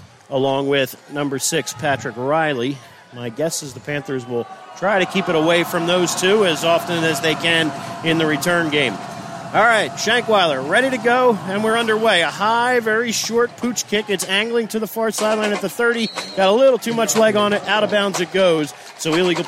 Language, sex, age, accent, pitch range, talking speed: English, male, 40-59, American, 150-195 Hz, 210 wpm